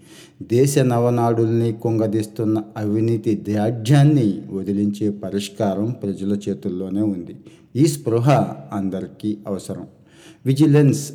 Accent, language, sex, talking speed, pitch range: native, Telugu, male, 80 wpm, 105-125 Hz